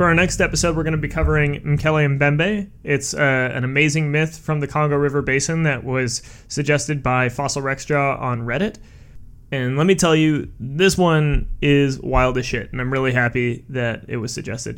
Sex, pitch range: male, 130-165 Hz